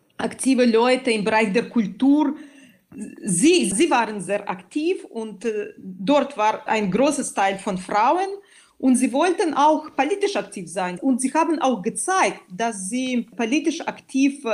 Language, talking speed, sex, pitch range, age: German, 145 wpm, female, 210-285 Hz, 40-59